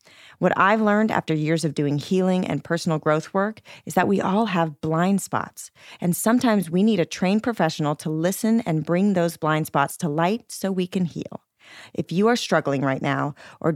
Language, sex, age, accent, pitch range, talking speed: English, female, 40-59, American, 155-205 Hz, 200 wpm